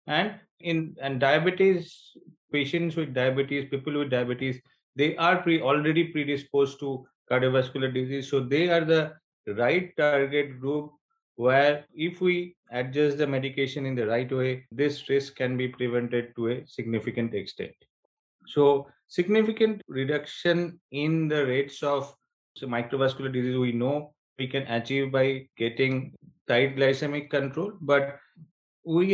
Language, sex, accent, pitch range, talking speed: English, male, Indian, 130-150 Hz, 135 wpm